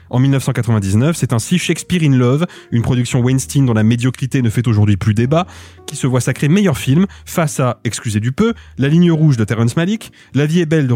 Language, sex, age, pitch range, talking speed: French, male, 30-49, 120-155 Hz, 220 wpm